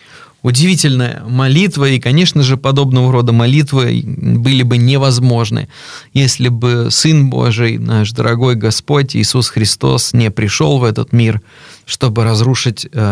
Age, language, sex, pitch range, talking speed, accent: 20-39, Russian, male, 115-140 Hz, 125 wpm, native